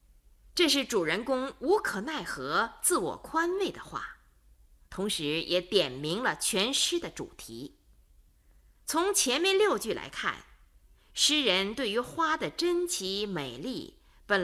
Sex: female